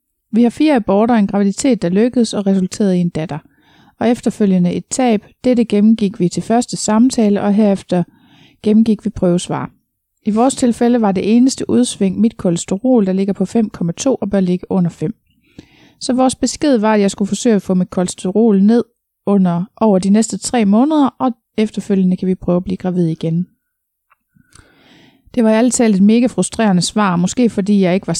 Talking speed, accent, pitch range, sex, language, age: 185 wpm, native, 185-225 Hz, female, Danish, 30-49